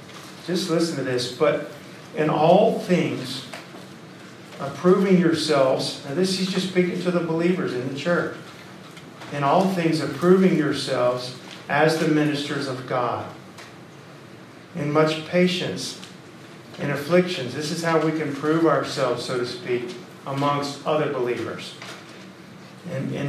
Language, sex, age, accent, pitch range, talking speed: English, male, 50-69, American, 130-160 Hz, 130 wpm